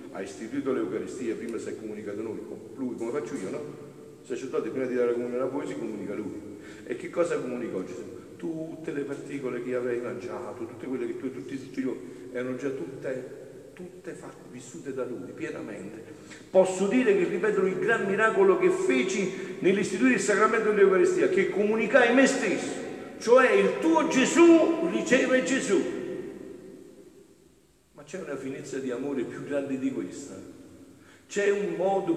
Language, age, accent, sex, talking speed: Italian, 50-69, native, male, 165 wpm